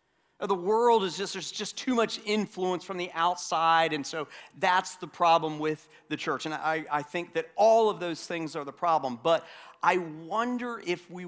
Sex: male